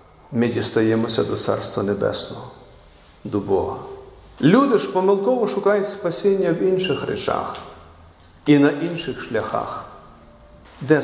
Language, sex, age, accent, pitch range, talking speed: Ukrainian, male, 50-69, native, 125-185 Hz, 110 wpm